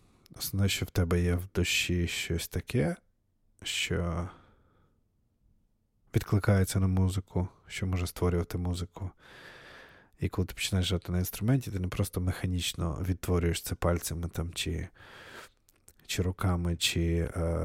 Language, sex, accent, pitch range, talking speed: Ukrainian, male, native, 85-100 Hz, 125 wpm